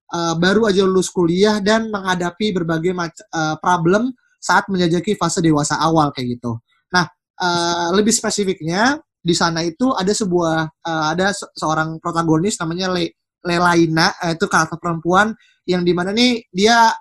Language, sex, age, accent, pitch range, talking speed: Indonesian, male, 20-39, native, 170-205 Hz, 155 wpm